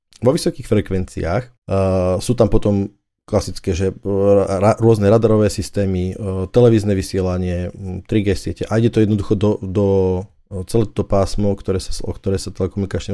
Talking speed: 140 wpm